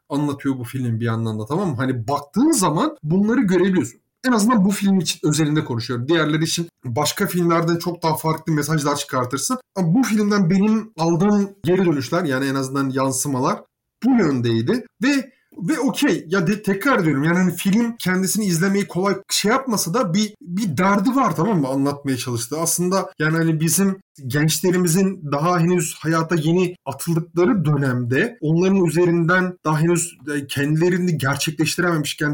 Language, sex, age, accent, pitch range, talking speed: Turkish, male, 30-49, native, 145-185 Hz, 155 wpm